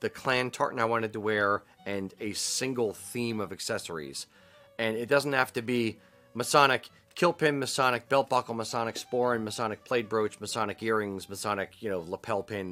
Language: English